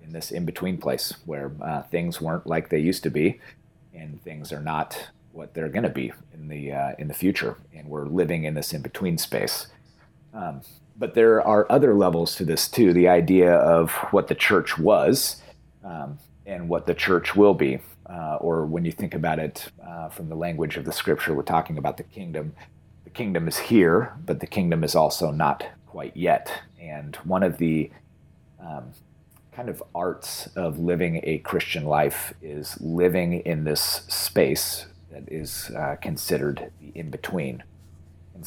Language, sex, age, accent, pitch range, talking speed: English, male, 30-49, American, 80-90 Hz, 180 wpm